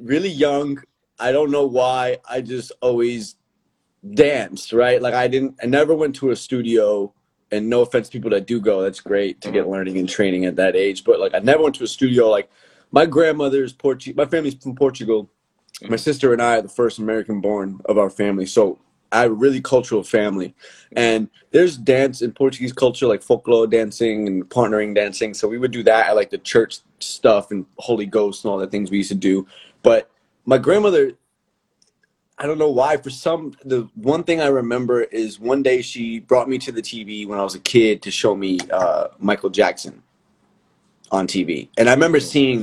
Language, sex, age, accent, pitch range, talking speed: English, male, 20-39, American, 105-140 Hz, 205 wpm